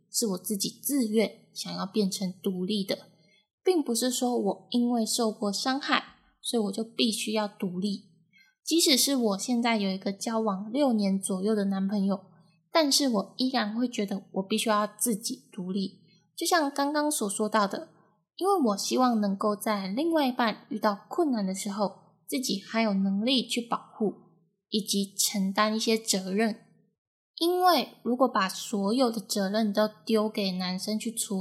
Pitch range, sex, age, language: 200-245 Hz, female, 10-29, Chinese